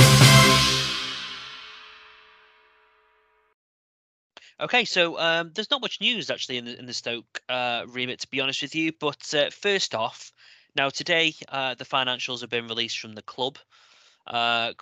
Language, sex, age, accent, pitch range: English, male, 20-39, British, 110-135 Hz